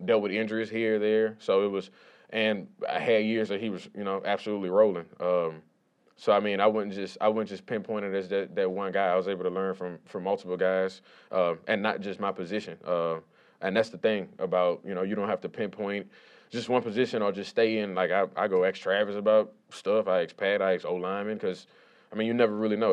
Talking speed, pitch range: 245 wpm, 95-110 Hz